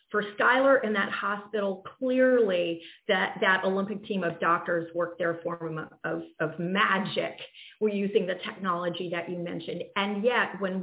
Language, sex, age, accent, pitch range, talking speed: English, female, 40-59, American, 180-220 Hz, 160 wpm